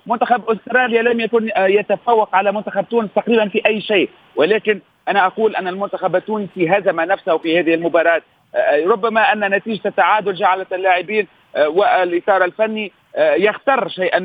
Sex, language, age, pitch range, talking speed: male, Arabic, 40-59, 170-205 Hz, 140 wpm